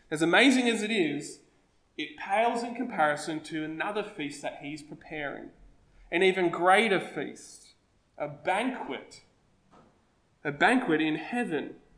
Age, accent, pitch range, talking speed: 20-39, Australian, 145-200 Hz, 125 wpm